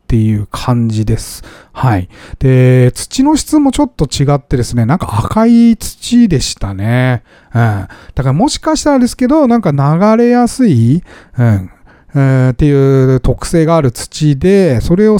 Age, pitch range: 40-59, 115-175 Hz